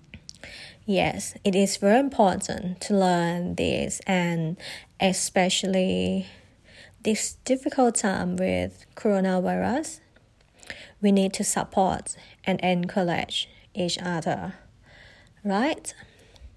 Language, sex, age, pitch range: Thai, female, 20-39, 180-210 Hz